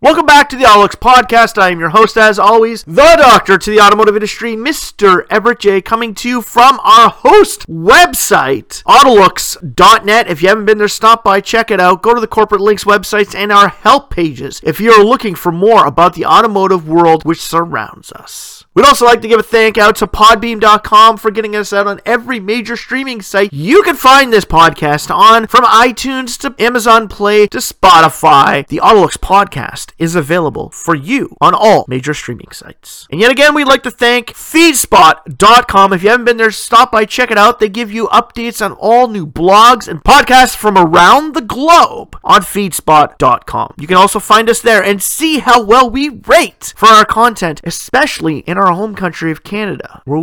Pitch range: 180-245 Hz